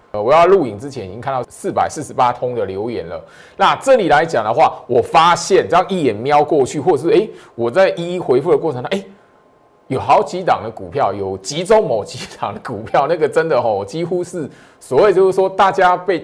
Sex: male